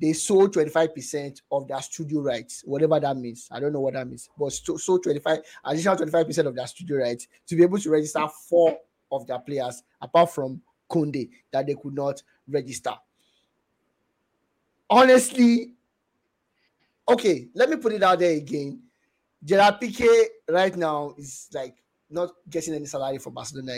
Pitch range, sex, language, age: 140-175 Hz, male, English, 30-49